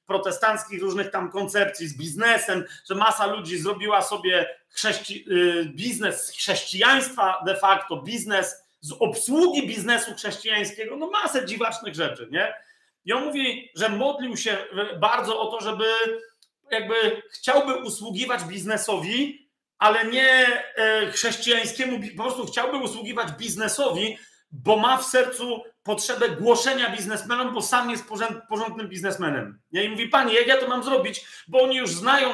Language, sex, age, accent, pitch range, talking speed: Polish, male, 40-59, native, 195-245 Hz, 135 wpm